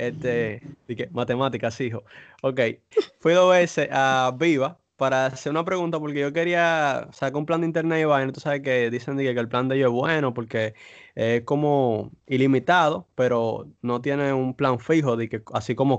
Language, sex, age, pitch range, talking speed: Spanish, male, 20-39, 120-155 Hz, 190 wpm